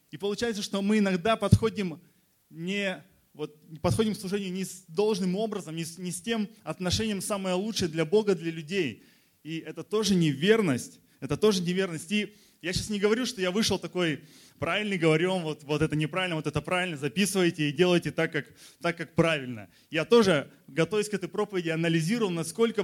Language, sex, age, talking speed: Russian, male, 20-39, 175 wpm